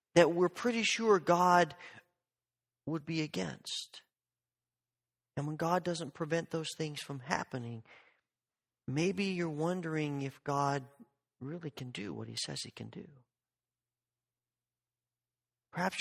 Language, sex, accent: English, male, American